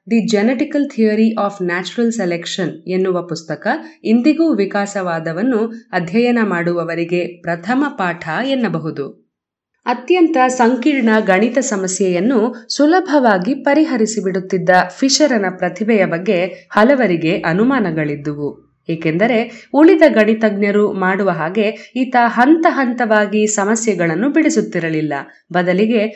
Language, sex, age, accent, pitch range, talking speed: Kannada, female, 20-39, native, 185-245 Hz, 85 wpm